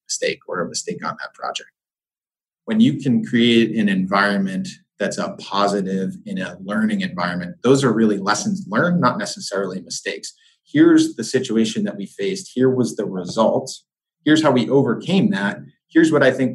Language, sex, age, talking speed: English, male, 30-49, 170 wpm